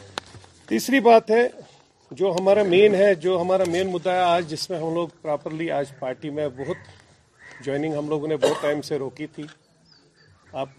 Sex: male